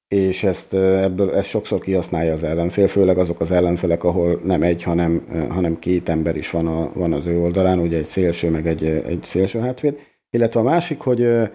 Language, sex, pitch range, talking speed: Hungarian, male, 90-115 Hz, 195 wpm